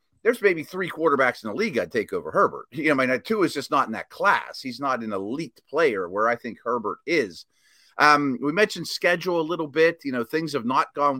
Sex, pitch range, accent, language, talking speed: male, 125-185 Hz, American, English, 250 wpm